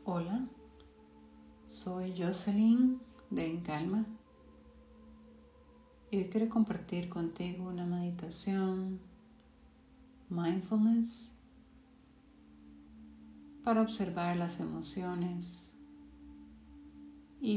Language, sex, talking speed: Spanish, female, 60 wpm